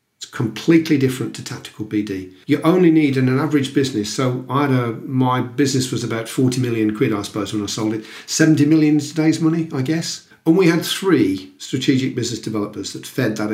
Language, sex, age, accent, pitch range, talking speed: English, male, 40-59, British, 110-145 Hz, 215 wpm